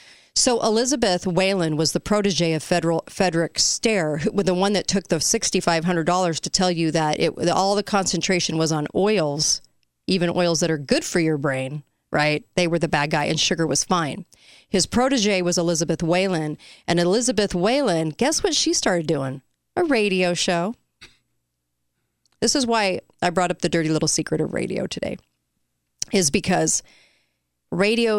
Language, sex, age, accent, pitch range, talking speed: English, female, 40-59, American, 160-195 Hz, 165 wpm